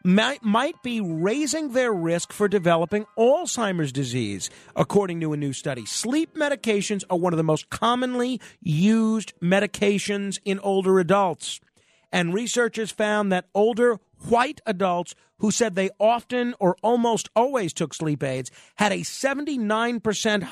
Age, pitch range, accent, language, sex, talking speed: 40-59, 155-220 Hz, American, English, male, 140 wpm